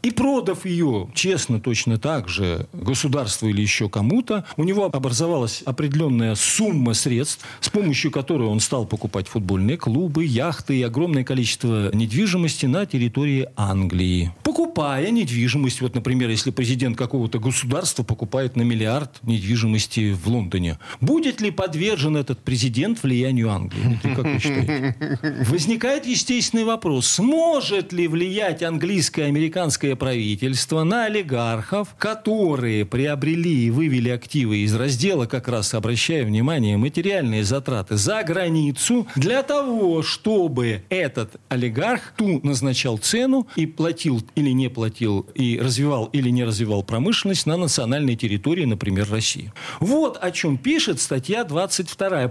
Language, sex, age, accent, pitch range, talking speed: Russian, male, 40-59, native, 120-175 Hz, 130 wpm